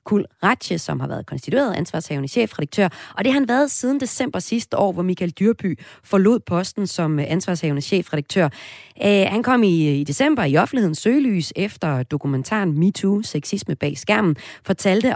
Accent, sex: native, female